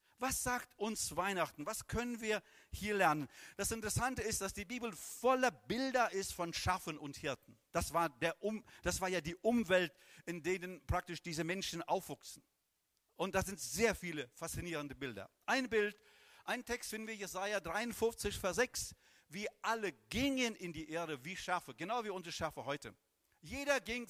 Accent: German